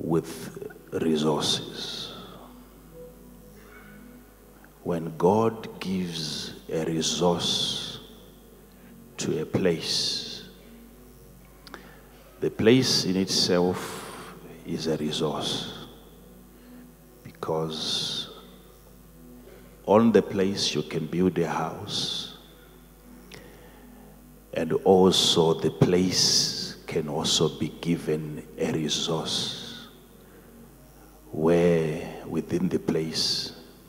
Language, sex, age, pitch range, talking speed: English, male, 50-69, 75-90 Hz, 70 wpm